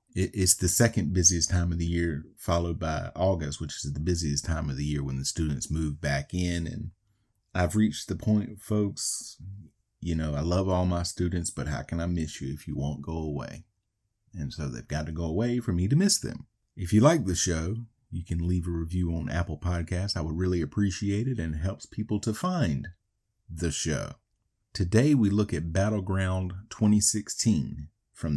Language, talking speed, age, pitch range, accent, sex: English, 200 wpm, 30-49, 85-110 Hz, American, male